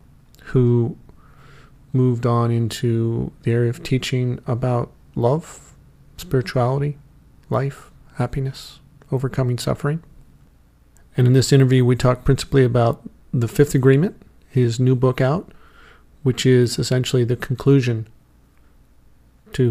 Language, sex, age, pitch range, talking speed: English, male, 40-59, 110-130 Hz, 110 wpm